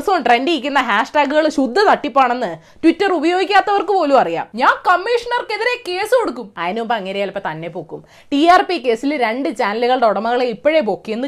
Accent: native